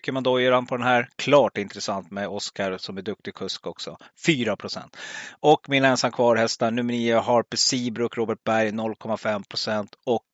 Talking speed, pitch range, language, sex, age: 180 wpm, 105-125 Hz, Swedish, male, 30-49